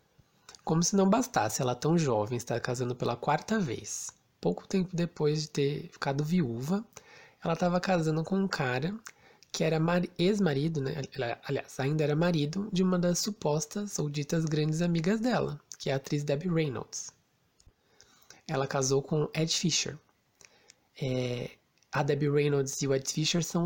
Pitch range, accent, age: 130-170 Hz, Brazilian, 20-39